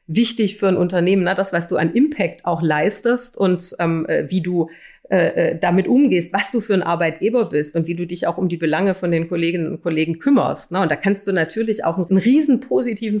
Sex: female